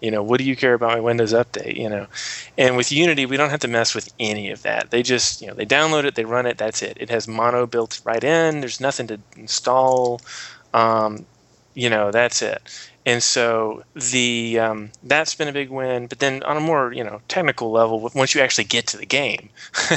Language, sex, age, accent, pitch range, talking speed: English, male, 30-49, American, 115-130 Hz, 230 wpm